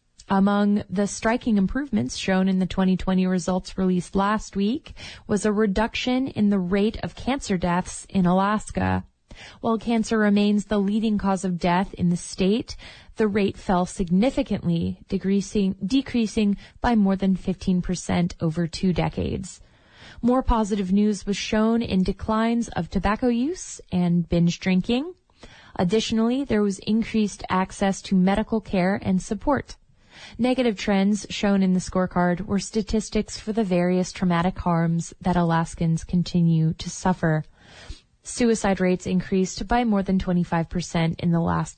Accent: American